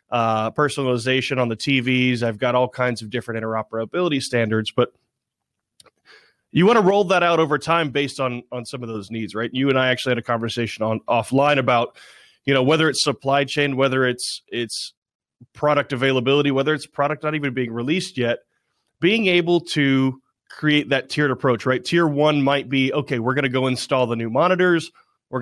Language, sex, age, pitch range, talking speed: English, male, 30-49, 120-150 Hz, 190 wpm